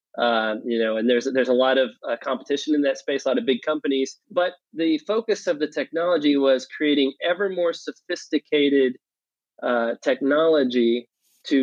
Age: 30-49